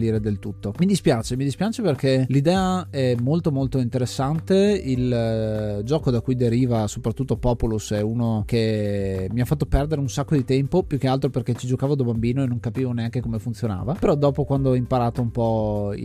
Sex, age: male, 20-39